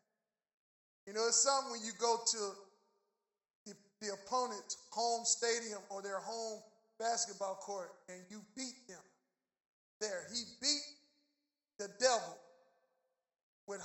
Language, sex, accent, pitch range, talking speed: English, male, American, 210-255 Hz, 120 wpm